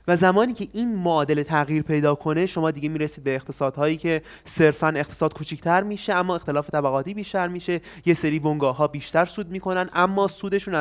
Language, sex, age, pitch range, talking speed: Persian, male, 30-49, 150-200 Hz, 170 wpm